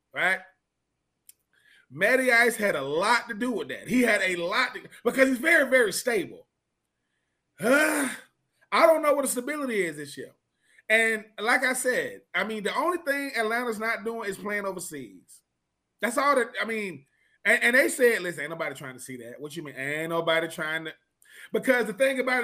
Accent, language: American, English